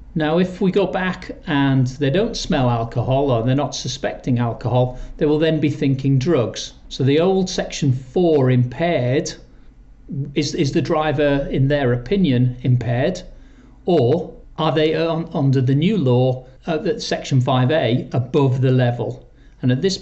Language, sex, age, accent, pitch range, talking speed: English, male, 40-59, British, 125-150 Hz, 155 wpm